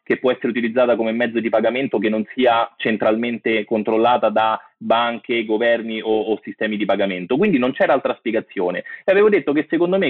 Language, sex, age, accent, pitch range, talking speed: Italian, male, 30-49, native, 115-150 Hz, 190 wpm